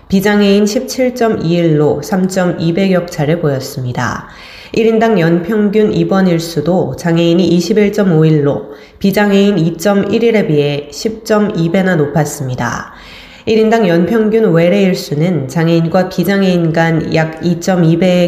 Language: Korean